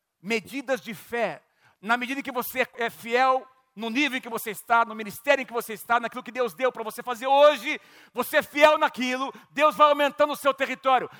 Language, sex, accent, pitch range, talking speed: Portuguese, male, Brazilian, 225-285 Hz, 210 wpm